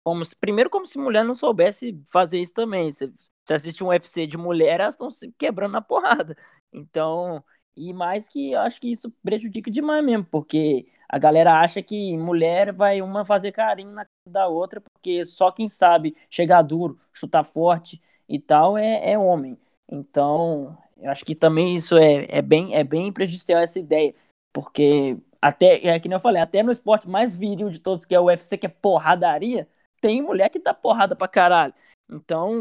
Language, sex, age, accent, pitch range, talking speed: Portuguese, male, 20-39, Brazilian, 155-200 Hz, 195 wpm